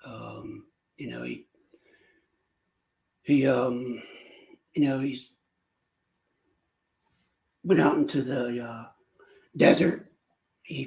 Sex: male